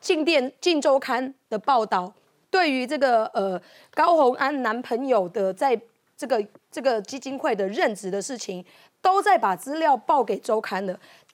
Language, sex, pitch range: Chinese, female, 205-295 Hz